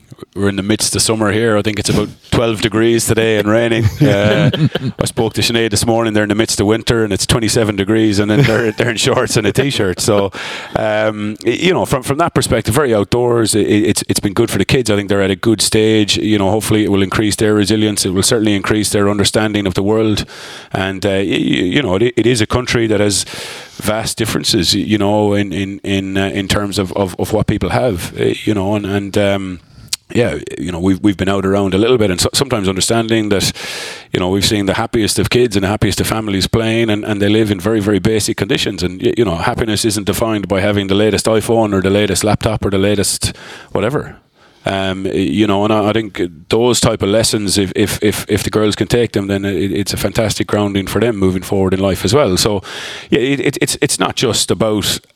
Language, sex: English, male